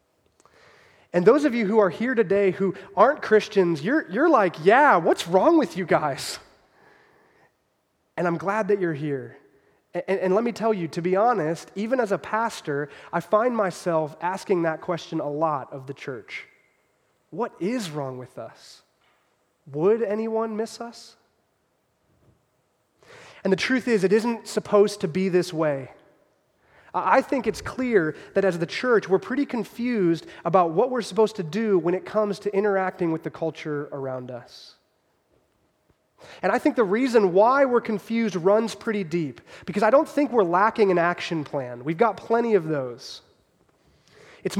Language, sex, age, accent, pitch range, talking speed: English, male, 30-49, American, 170-225 Hz, 165 wpm